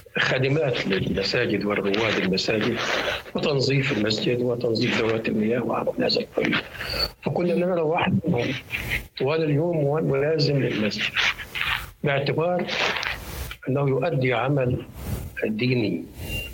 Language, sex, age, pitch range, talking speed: Arabic, male, 60-79, 115-155 Hz, 85 wpm